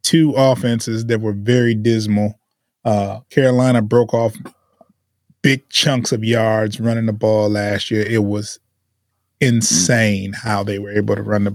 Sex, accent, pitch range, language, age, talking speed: male, American, 110-150 Hz, English, 20-39, 150 wpm